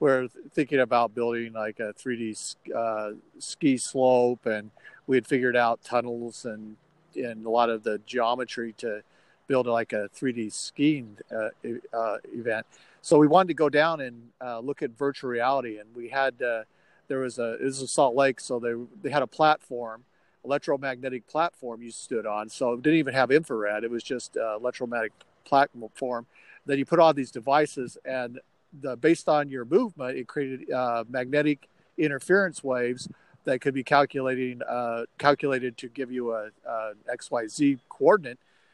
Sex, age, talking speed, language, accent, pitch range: male, 50-69, 175 wpm, English, American, 120-145 Hz